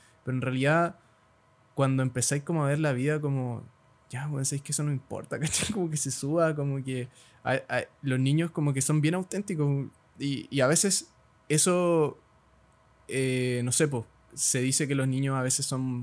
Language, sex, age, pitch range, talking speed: Spanish, male, 20-39, 125-150 Hz, 200 wpm